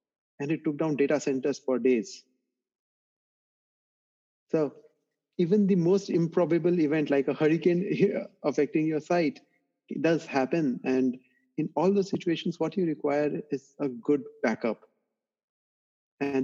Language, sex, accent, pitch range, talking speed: English, male, Indian, 140-180 Hz, 130 wpm